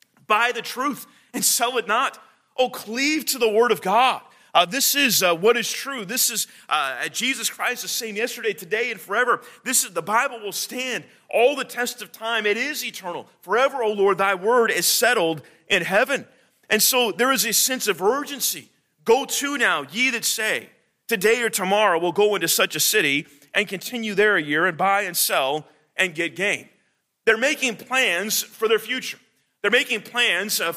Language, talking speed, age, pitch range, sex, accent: English, 195 wpm, 30-49, 190-240 Hz, male, American